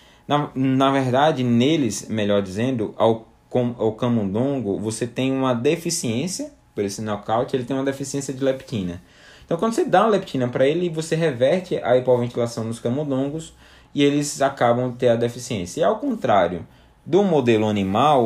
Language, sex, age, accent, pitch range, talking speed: Portuguese, male, 20-39, Brazilian, 110-145 Hz, 165 wpm